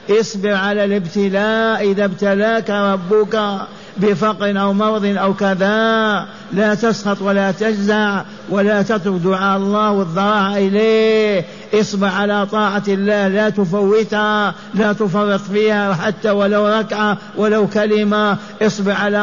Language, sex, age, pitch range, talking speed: Arabic, male, 50-69, 190-210 Hz, 115 wpm